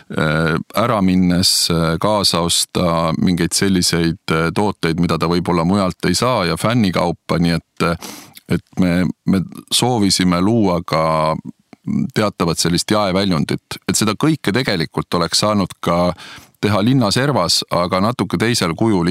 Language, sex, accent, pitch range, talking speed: English, male, Finnish, 85-105 Hz, 125 wpm